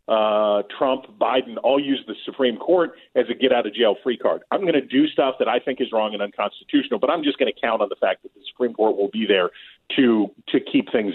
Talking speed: 260 wpm